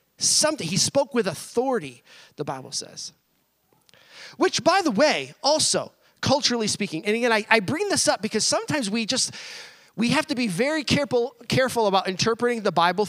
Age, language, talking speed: 30-49, English, 170 wpm